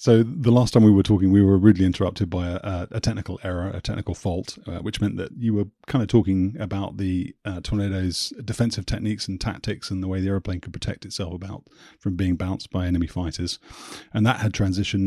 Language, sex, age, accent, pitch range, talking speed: English, male, 30-49, British, 90-110 Hz, 220 wpm